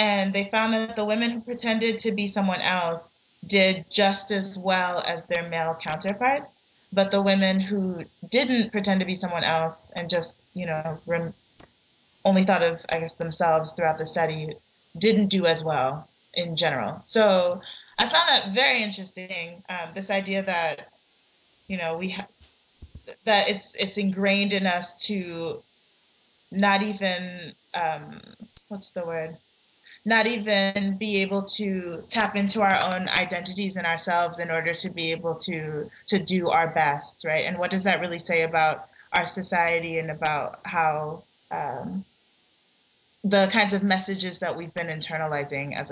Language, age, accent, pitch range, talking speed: English, 20-39, American, 165-195 Hz, 160 wpm